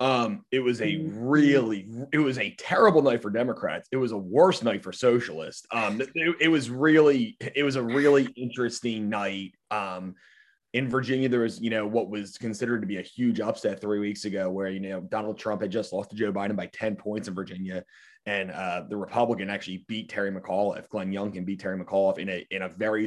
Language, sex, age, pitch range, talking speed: English, male, 30-49, 105-135 Hz, 215 wpm